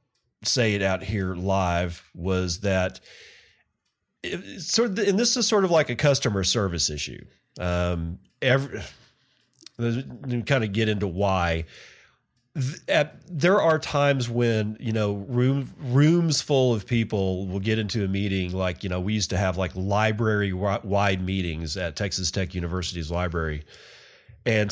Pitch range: 90-120 Hz